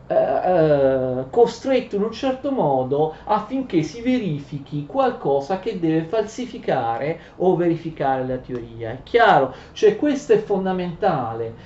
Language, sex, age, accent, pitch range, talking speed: Italian, male, 40-59, native, 140-210 Hz, 115 wpm